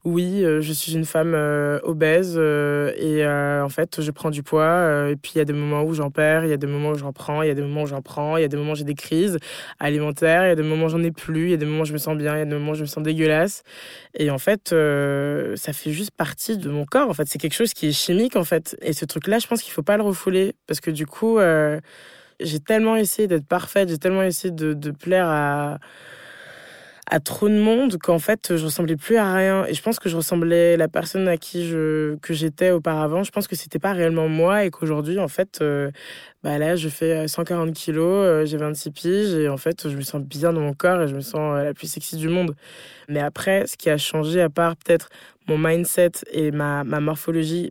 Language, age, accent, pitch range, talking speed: French, 20-39, French, 150-180 Hz, 265 wpm